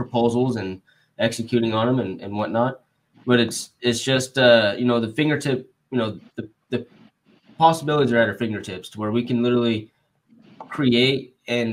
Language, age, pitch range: English, 20-39, 110-125 Hz